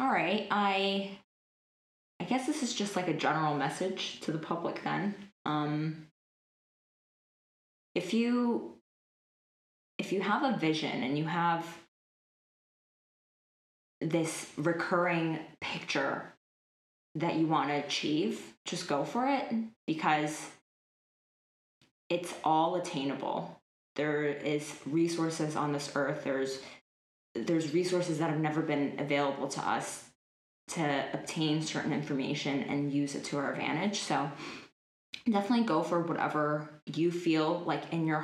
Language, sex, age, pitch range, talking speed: English, female, 20-39, 145-175 Hz, 125 wpm